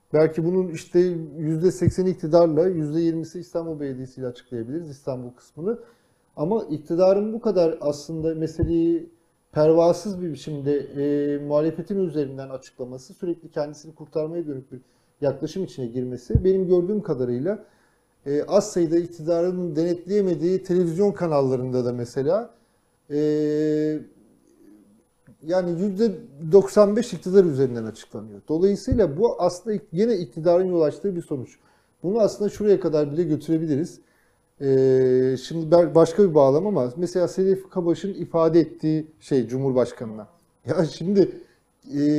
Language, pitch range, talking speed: Turkish, 140-185 Hz, 115 wpm